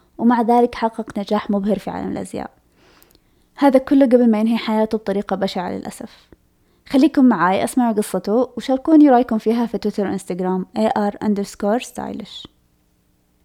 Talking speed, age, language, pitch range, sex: 125 wpm, 20-39, Arabic, 190-235 Hz, female